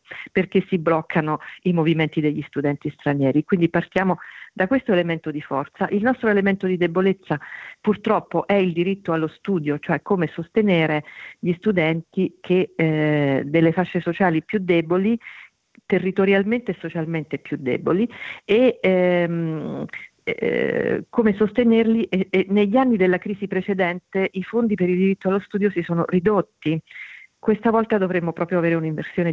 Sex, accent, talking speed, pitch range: female, native, 140 wpm, 155-190 Hz